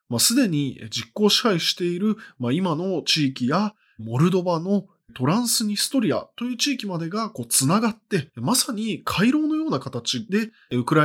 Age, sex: 20-39, male